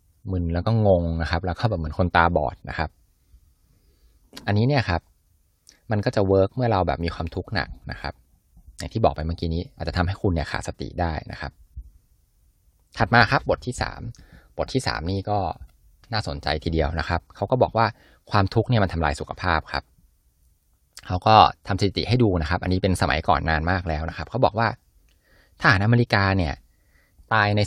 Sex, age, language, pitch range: male, 20-39, Thai, 80-105 Hz